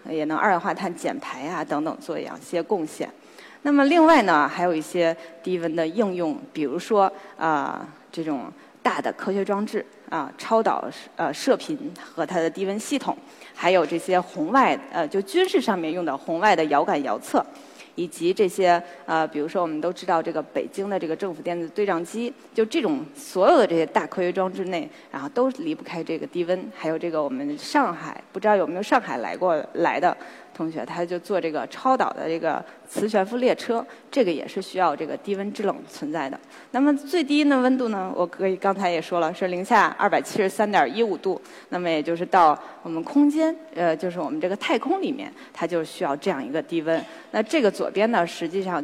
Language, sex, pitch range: Chinese, female, 170-270 Hz